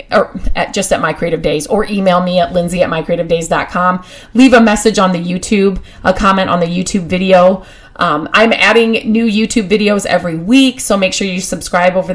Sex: female